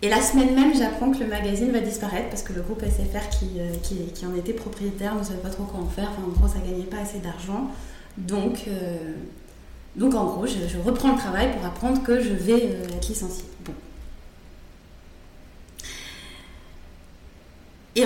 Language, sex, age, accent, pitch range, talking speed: French, female, 30-49, French, 180-250 Hz, 190 wpm